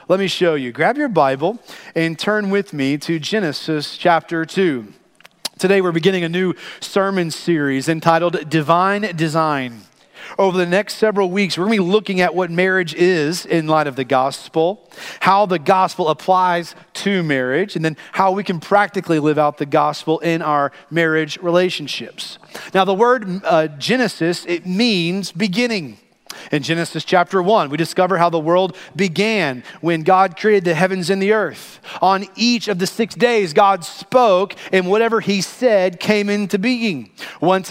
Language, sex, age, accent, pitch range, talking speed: English, male, 40-59, American, 165-215 Hz, 170 wpm